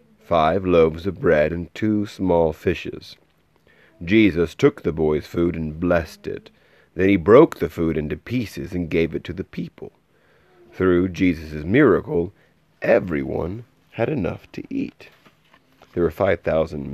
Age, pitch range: 30-49, 80-100 Hz